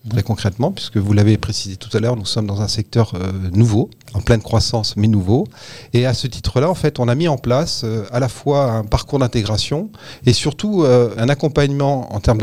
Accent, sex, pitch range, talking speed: French, male, 105-125 Hz, 210 wpm